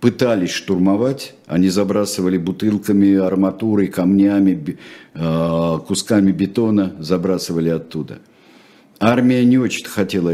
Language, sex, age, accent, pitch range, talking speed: Russian, male, 50-69, native, 85-115 Hz, 85 wpm